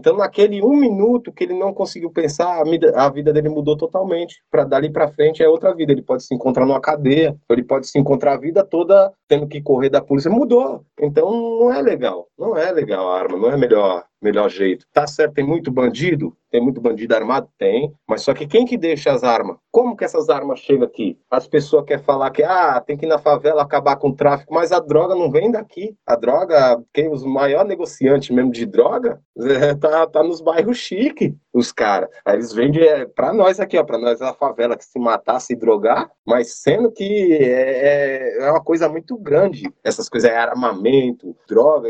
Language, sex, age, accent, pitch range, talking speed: Portuguese, male, 20-39, Brazilian, 140-195 Hz, 210 wpm